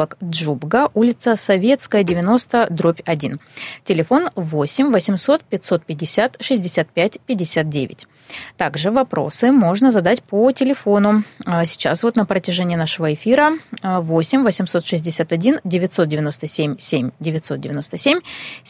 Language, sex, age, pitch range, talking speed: Russian, female, 20-39, 165-235 Hz, 80 wpm